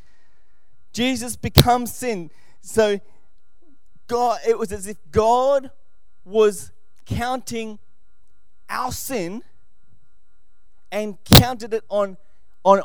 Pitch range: 170-240 Hz